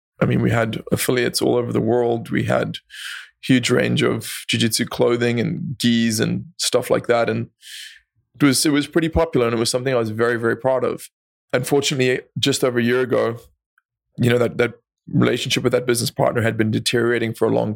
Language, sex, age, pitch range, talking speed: English, male, 20-39, 115-130 Hz, 205 wpm